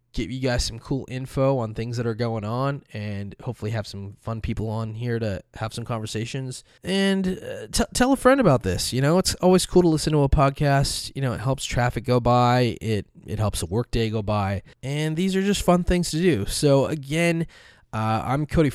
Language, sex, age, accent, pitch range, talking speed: English, male, 20-39, American, 110-140 Hz, 225 wpm